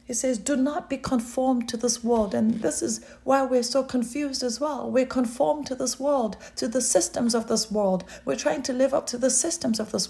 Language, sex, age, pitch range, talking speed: English, female, 40-59, 220-275 Hz, 230 wpm